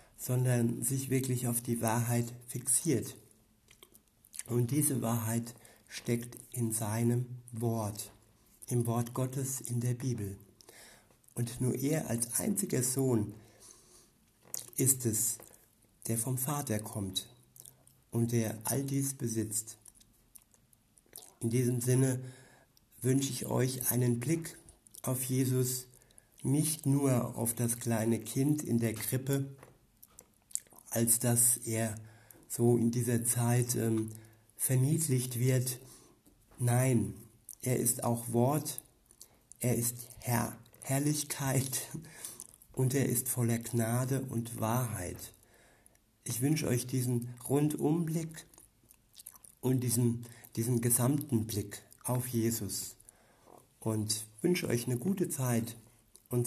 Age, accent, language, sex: 60-79, German, German, male